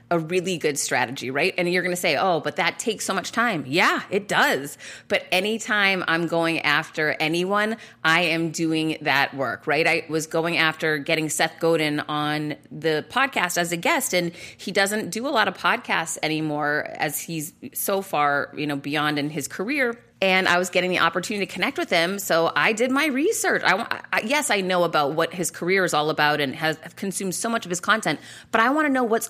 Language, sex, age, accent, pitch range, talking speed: English, female, 30-49, American, 160-220 Hz, 215 wpm